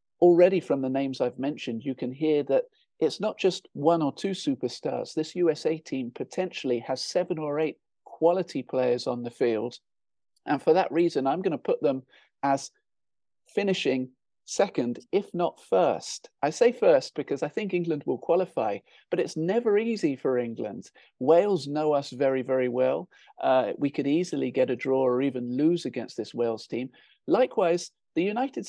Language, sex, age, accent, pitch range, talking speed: English, male, 40-59, British, 130-180 Hz, 175 wpm